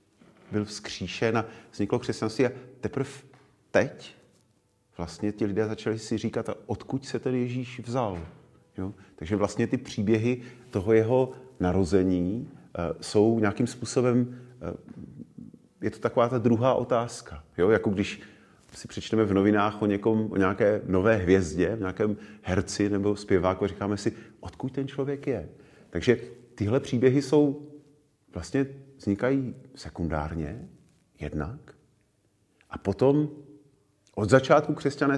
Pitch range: 100-130 Hz